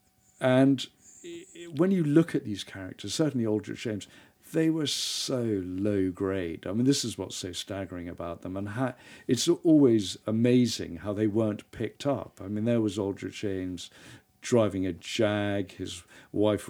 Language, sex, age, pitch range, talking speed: English, male, 50-69, 100-130 Hz, 160 wpm